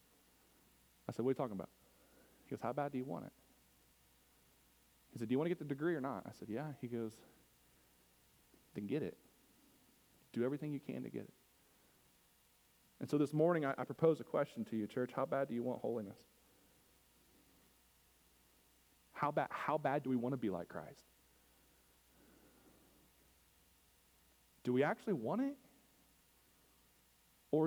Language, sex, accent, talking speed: English, male, American, 165 wpm